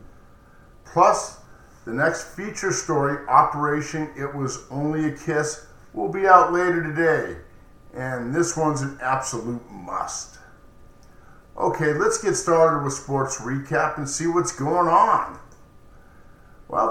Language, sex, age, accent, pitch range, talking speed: English, male, 50-69, American, 135-170 Hz, 125 wpm